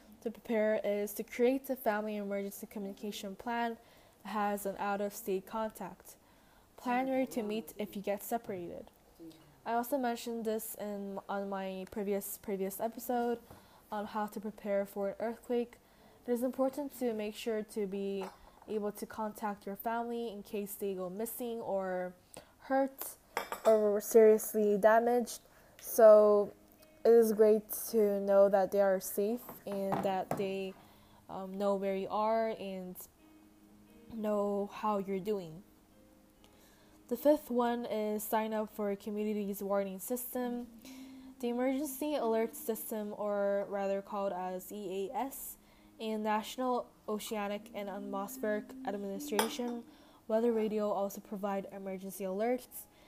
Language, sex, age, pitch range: Korean, female, 10-29, 200-230 Hz